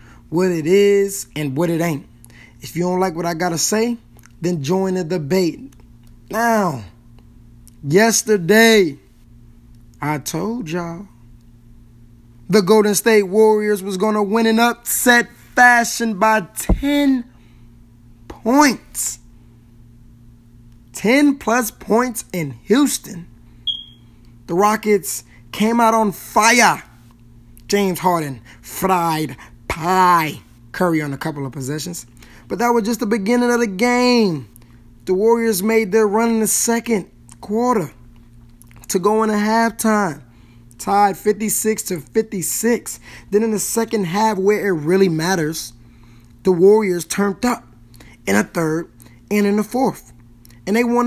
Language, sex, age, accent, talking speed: English, male, 20-39, American, 130 wpm